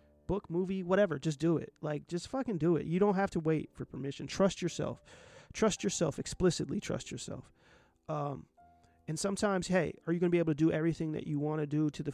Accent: American